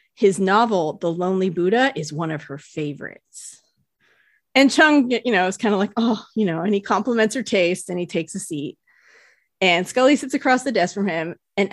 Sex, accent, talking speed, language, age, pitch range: female, American, 205 wpm, English, 30-49, 180-245 Hz